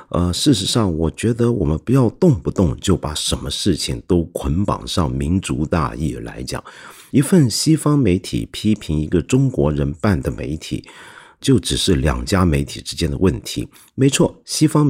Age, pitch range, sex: 50-69, 75-120 Hz, male